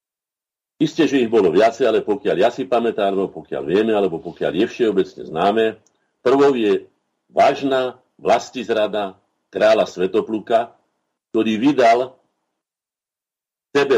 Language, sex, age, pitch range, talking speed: Slovak, male, 50-69, 105-135 Hz, 115 wpm